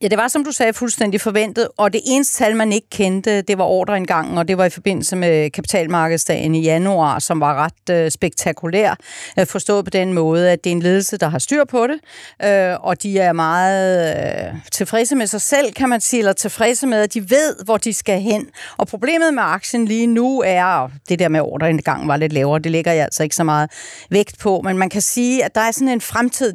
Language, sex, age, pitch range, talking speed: Danish, female, 40-59, 175-225 Hz, 225 wpm